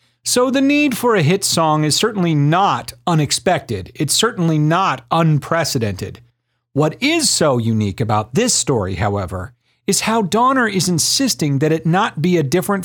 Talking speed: 160 wpm